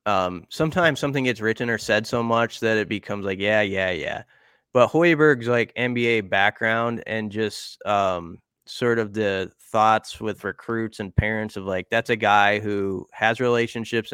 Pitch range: 105-120 Hz